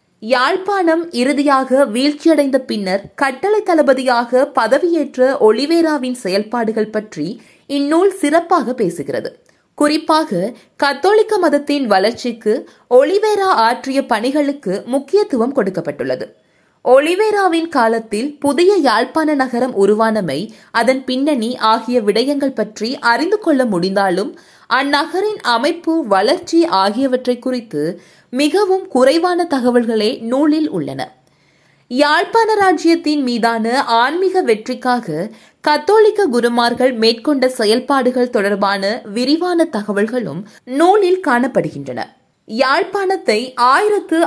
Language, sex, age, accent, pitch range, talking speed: Tamil, female, 20-39, native, 230-325 Hz, 85 wpm